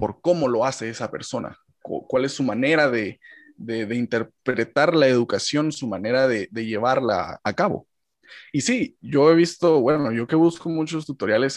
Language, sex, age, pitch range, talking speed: Spanish, male, 20-39, 125-175 Hz, 175 wpm